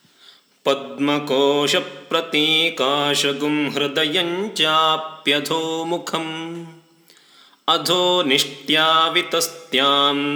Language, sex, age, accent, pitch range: English, male, 30-49, Indian, 145-165 Hz